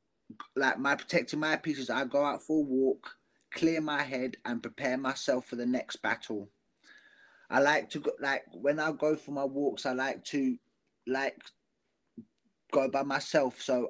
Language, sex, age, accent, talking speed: English, male, 20-39, British, 175 wpm